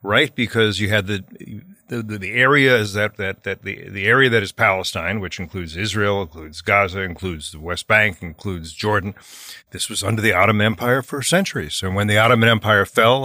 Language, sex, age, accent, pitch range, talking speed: English, male, 50-69, American, 100-125 Hz, 200 wpm